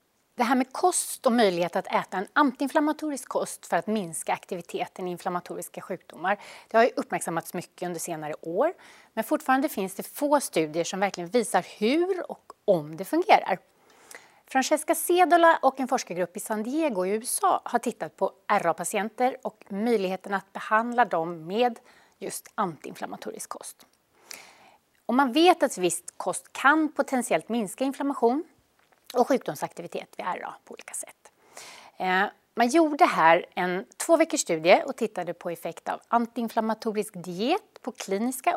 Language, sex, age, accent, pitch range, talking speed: Swedish, female, 30-49, native, 185-280 Hz, 145 wpm